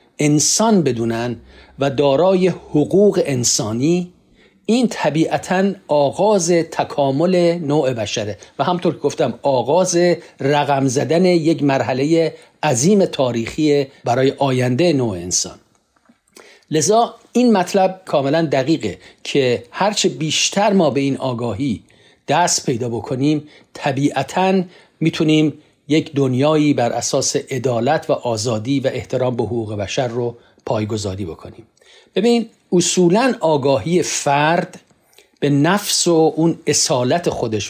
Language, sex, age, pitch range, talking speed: Persian, male, 50-69, 130-175 Hz, 110 wpm